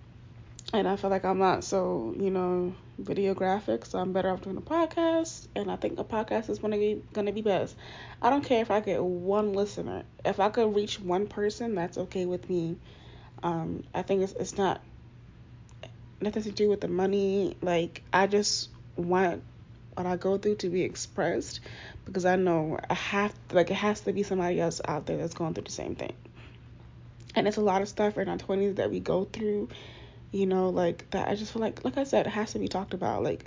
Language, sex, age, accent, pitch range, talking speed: English, female, 20-39, American, 175-210 Hz, 220 wpm